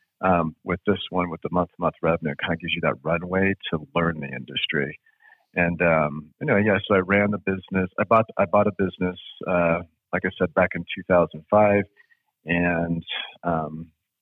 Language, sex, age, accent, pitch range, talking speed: English, male, 40-59, American, 85-95 Hz, 195 wpm